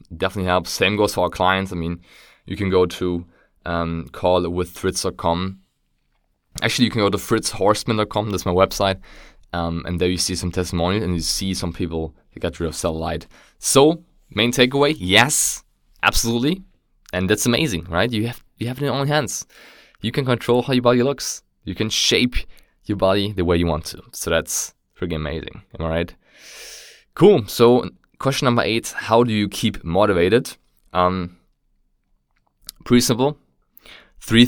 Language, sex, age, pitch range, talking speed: English, male, 20-39, 85-105 Hz, 170 wpm